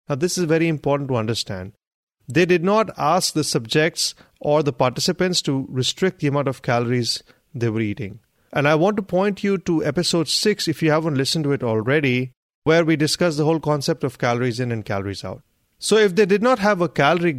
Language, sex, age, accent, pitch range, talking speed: English, male, 30-49, Indian, 125-170 Hz, 210 wpm